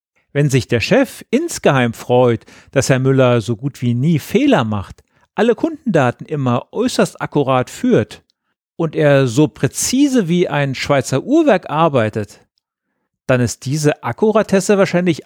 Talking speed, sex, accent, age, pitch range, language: 140 wpm, male, German, 40-59, 120-185 Hz, German